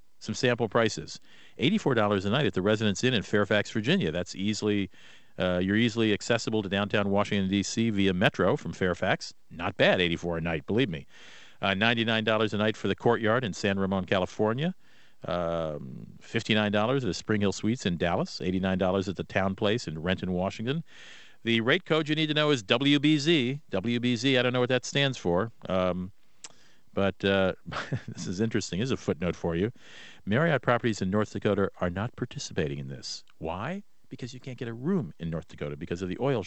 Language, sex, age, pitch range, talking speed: English, male, 50-69, 95-130 Hz, 185 wpm